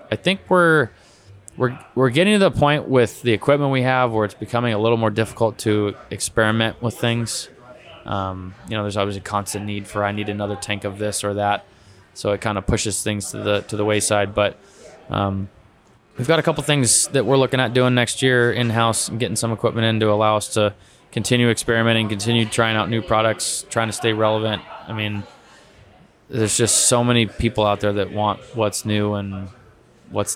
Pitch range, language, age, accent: 100-115 Hz, English, 20-39, American